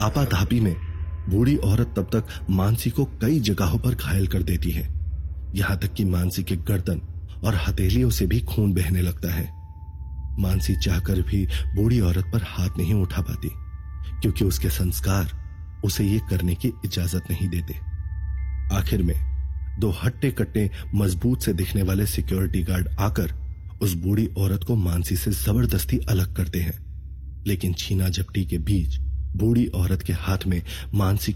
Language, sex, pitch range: Hindi, male, 85-100 Hz